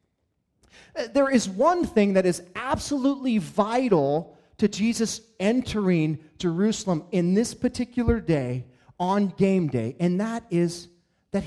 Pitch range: 170-225 Hz